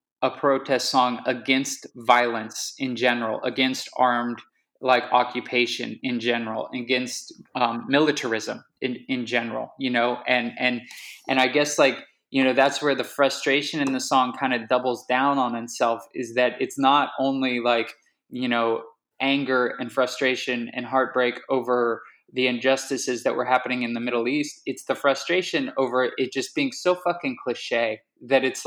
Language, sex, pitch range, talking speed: English, male, 125-140 Hz, 160 wpm